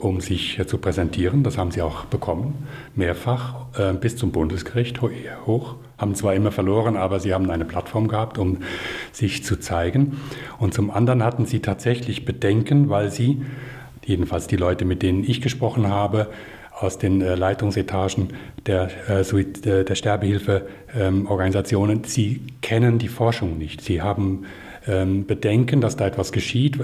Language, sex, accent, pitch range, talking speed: German, male, German, 95-120 Hz, 140 wpm